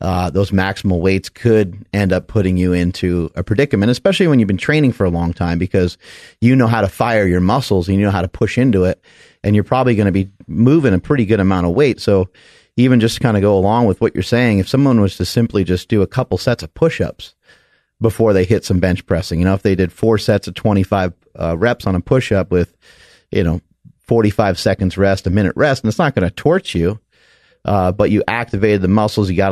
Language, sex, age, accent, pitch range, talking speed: English, male, 30-49, American, 95-115 Hz, 240 wpm